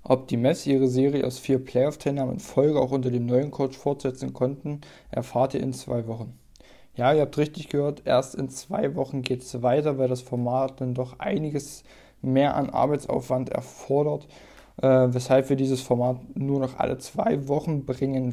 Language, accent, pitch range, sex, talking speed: German, German, 130-145 Hz, male, 180 wpm